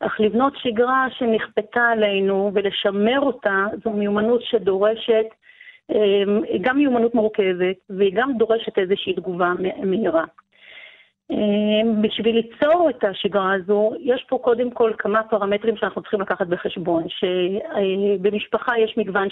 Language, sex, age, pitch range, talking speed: Hebrew, female, 40-59, 200-235 Hz, 115 wpm